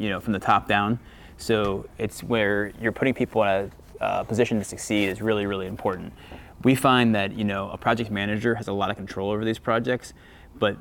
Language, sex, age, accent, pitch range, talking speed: English, male, 20-39, American, 100-115 Hz, 215 wpm